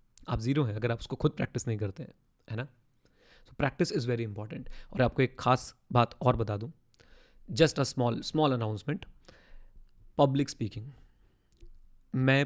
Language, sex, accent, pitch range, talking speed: Hindi, male, native, 115-135 Hz, 165 wpm